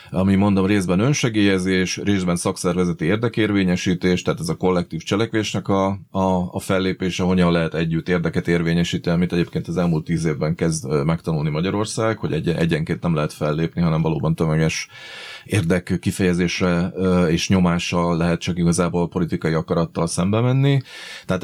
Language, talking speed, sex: Hungarian, 145 wpm, male